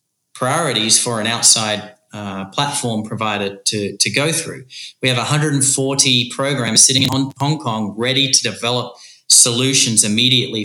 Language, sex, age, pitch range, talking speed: English, male, 30-49, 115-145 Hz, 135 wpm